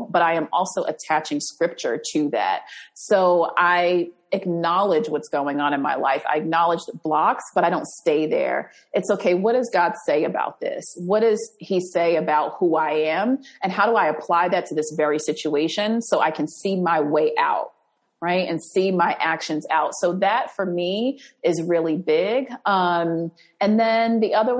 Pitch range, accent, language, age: 165-210 Hz, American, English, 30-49